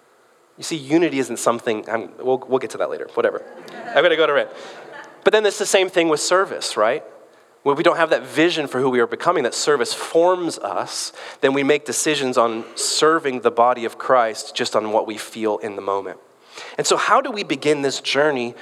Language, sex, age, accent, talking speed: English, male, 30-49, American, 220 wpm